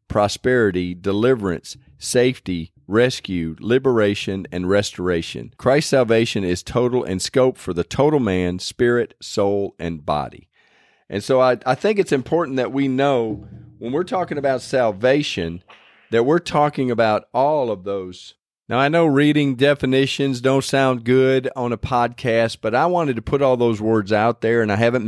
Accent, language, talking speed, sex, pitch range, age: American, English, 160 wpm, male, 95-130 Hz, 40-59